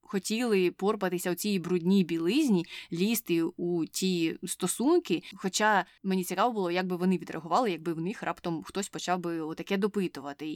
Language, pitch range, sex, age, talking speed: Ukrainian, 175-210 Hz, female, 20-39, 155 wpm